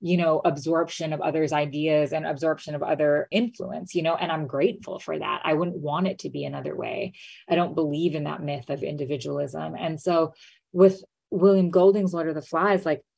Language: English